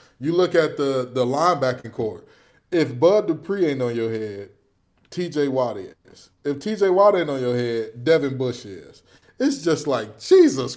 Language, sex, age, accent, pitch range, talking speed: English, male, 20-39, American, 130-180 Hz, 175 wpm